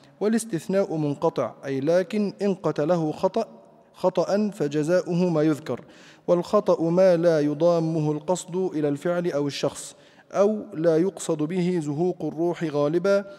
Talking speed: 115 wpm